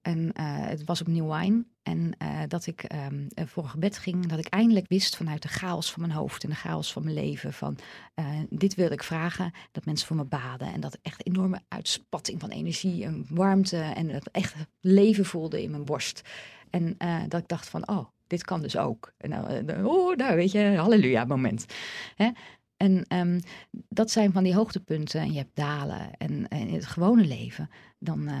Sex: female